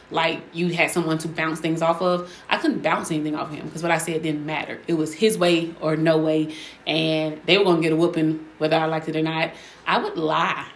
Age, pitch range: 20-39, 160-200 Hz